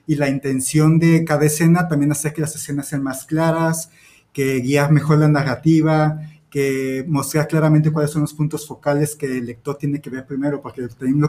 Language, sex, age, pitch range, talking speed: Spanish, male, 30-49, 140-165 Hz, 190 wpm